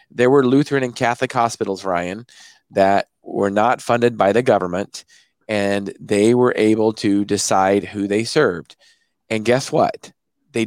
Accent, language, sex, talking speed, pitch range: American, English, male, 150 wpm, 105-140 Hz